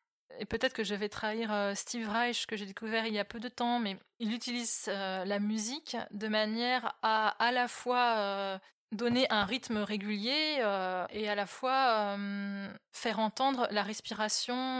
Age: 20-39